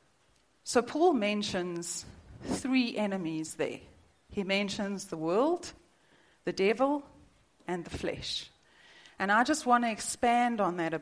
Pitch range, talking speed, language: 180-230 Hz, 130 wpm, English